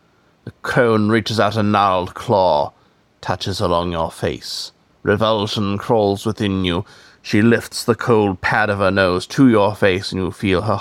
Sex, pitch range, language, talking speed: male, 95-110 Hz, English, 165 wpm